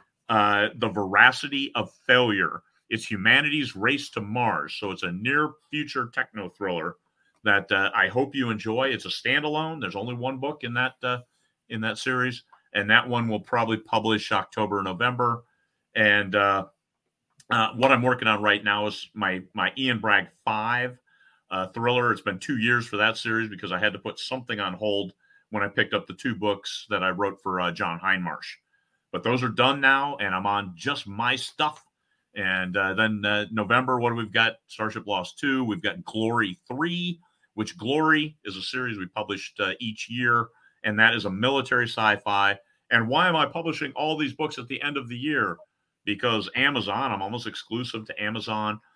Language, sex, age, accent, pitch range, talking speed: English, male, 40-59, American, 105-130 Hz, 190 wpm